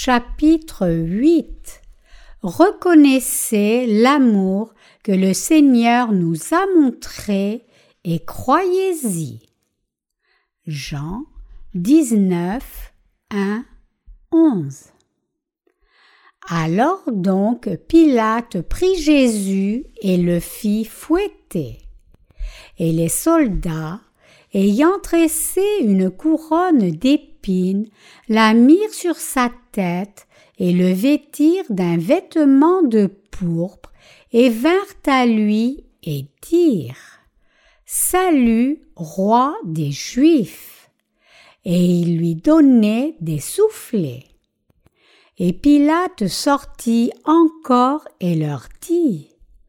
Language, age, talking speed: French, 60-79, 80 wpm